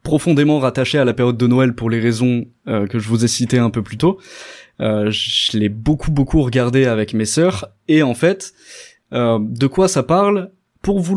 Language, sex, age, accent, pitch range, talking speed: French, male, 20-39, French, 120-155 Hz, 210 wpm